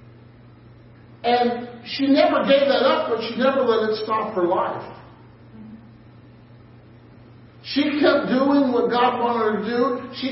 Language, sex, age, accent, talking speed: English, male, 40-59, American, 140 wpm